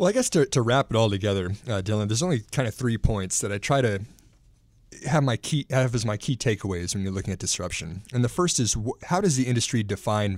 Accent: American